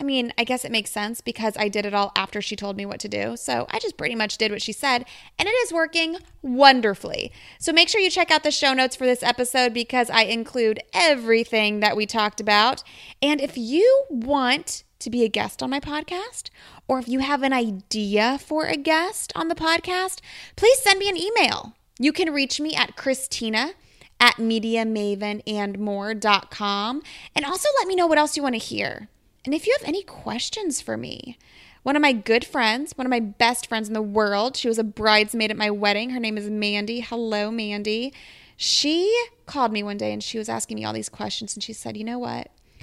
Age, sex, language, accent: 20-39, female, English, American